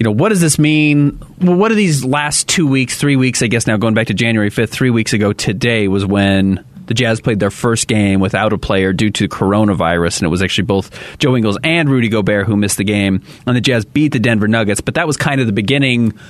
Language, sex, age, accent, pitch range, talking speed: English, male, 30-49, American, 105-150 Hz, 250 wpm